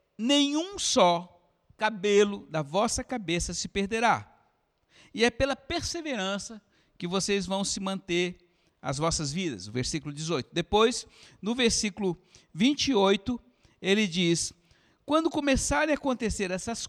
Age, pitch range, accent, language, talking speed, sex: 60-79, 195-240 Hz, Brazilian, Portuguese, 120 wpm, male